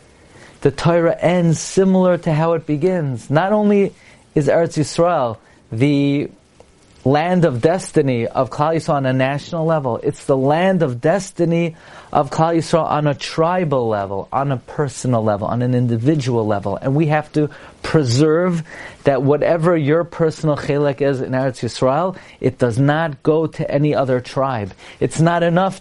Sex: male